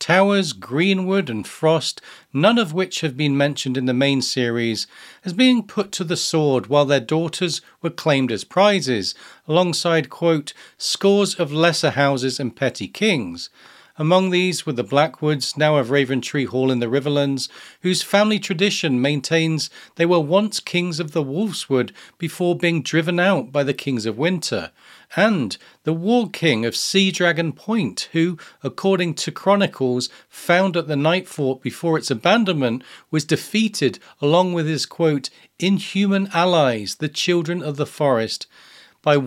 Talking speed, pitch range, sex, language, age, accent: 155 wpm, 135-180 Hz, male, English, 40-59, British